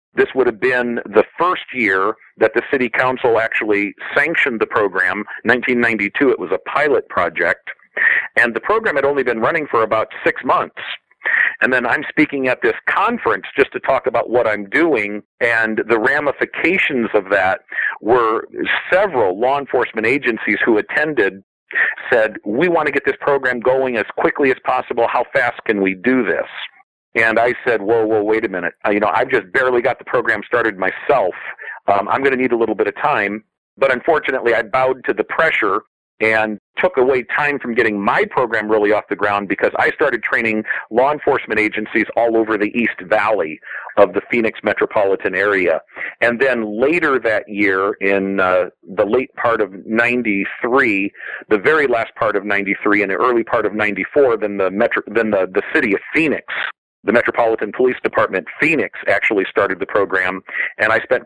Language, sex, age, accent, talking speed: English, male, 50-69, American, 180 wpm